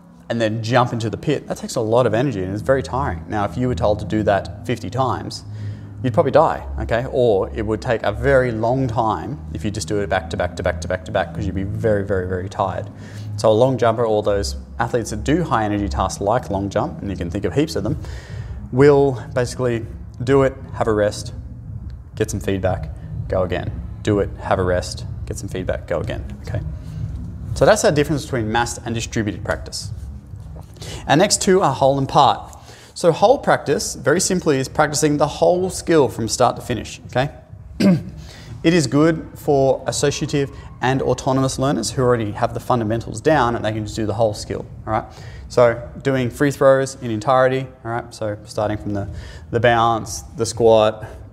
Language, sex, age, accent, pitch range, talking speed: English, male, 20-39, Australian, 100-125 Hz, 205 wpm